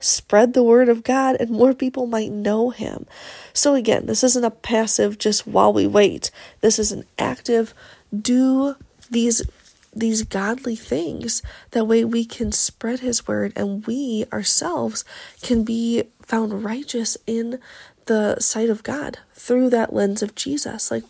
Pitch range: 210-245 Hz